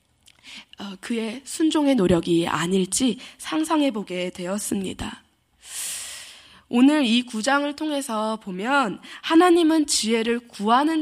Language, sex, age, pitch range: Korean, female, 20-39, 210-290 Hz